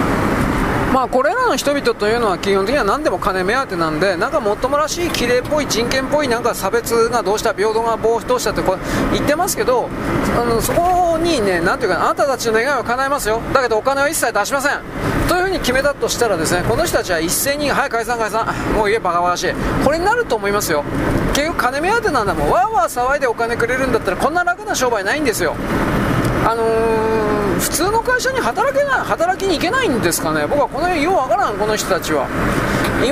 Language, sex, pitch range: Japanese, male, 225-340 Hz